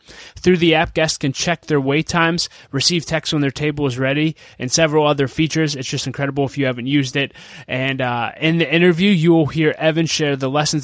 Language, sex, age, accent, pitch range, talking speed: English, male, 20-39, American, 140-160 Hz, 220 wpm